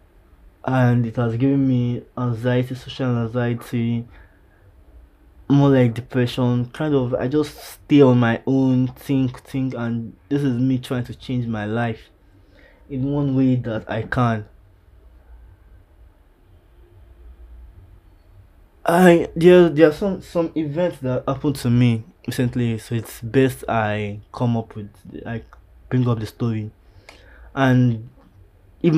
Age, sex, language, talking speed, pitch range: 20-39, male, English, 130 wpm, 95-130 Hz